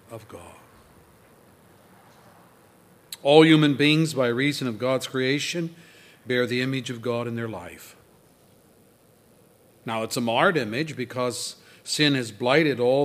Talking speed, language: 130 wpm, English